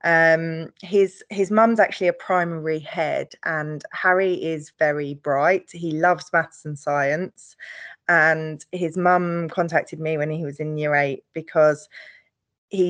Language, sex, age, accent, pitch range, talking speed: English, female, 20-39, British, 155-180 Hz, 145 wpm